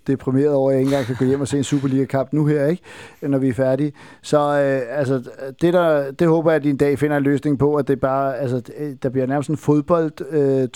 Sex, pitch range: male, 135-150 Hz